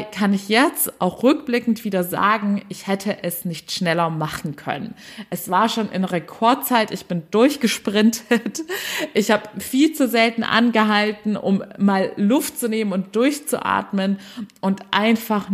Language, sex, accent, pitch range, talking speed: German, female, German, 185-220 Hz, 145 wpm